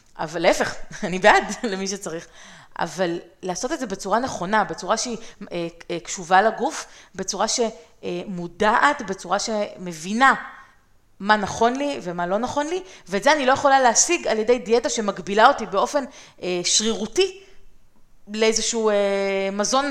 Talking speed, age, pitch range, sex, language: 135 wpm, 30-49, 185-250 Hz, female, Hebrew